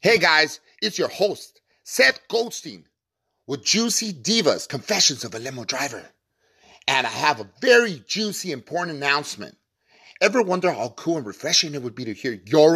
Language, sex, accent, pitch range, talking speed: English, male, American, 130-210 Hz, 165 wpm